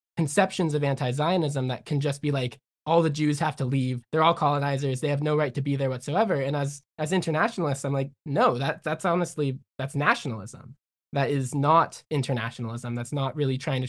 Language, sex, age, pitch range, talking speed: English, male, 20-39, 130-155 Hz, 200 wpm